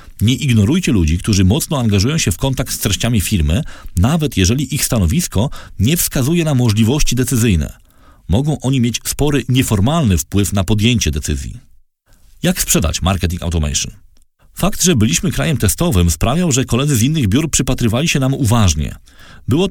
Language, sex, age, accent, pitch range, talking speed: Polish, male, 40-59, native, 95-140 Hz, 150 wpm